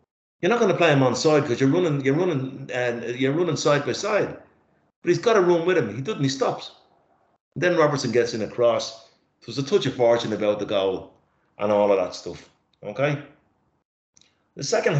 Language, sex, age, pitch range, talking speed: English, male, 30-49, 120-170 Hz, 215 wpm